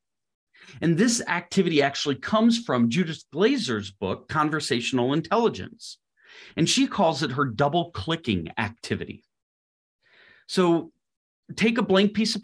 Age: 30-49